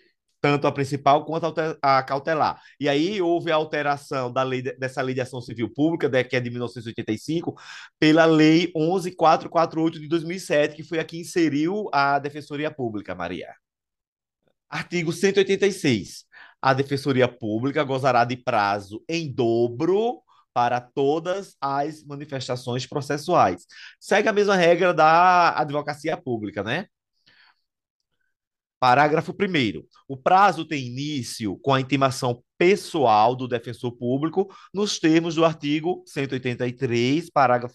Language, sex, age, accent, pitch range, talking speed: Portuguese, male, 20-39, Brazilian, 125-160 Hz, 120 wpm